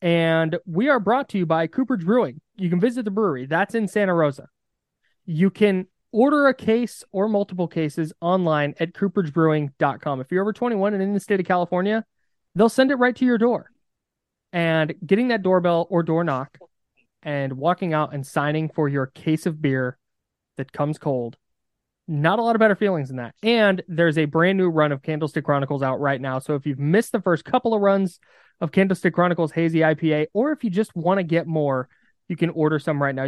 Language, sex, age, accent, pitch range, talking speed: English, male, 20-39, American, 145-190 Hz, 205 wpm